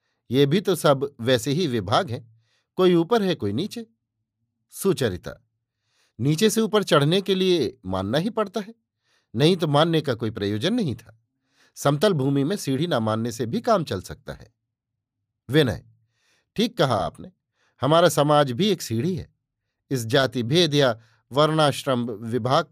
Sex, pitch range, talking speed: male, 120-170 Hz, 160 wpm